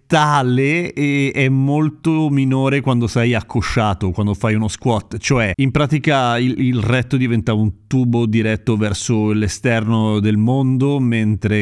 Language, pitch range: Italian, 120-150 Hz